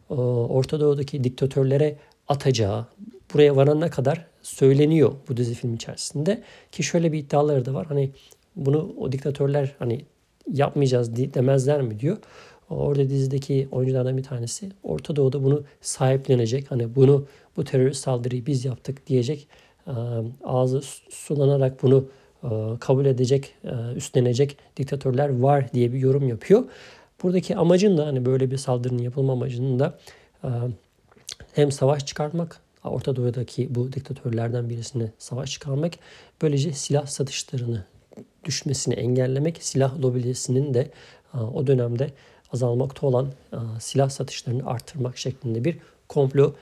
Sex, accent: male, native